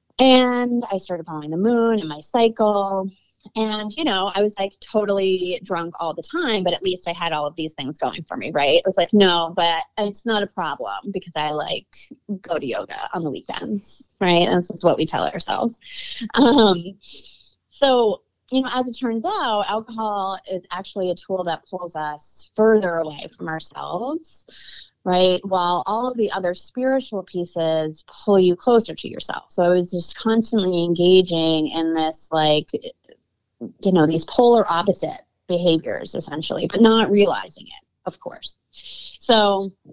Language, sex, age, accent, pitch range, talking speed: English, female, 20-39, American, 170-220 Hz, 175 wpm